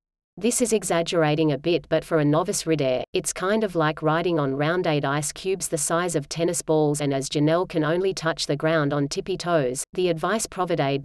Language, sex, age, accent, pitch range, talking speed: English, female, 40-59, Australian, 145-180 Hz, 205 wpm